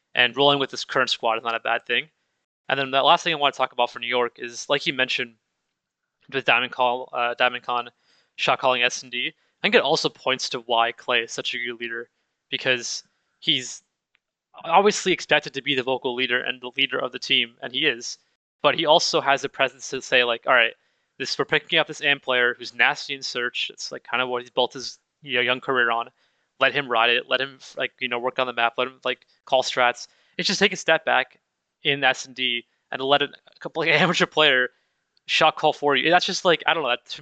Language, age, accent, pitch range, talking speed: English, 20-39, American, 120-140 Hz, 240 wpm